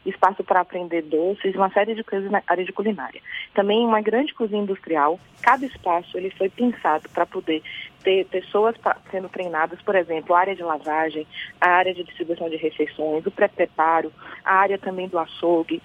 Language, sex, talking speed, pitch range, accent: Portuguese, female, 180 wpm, 175-220 Hz, Brazilian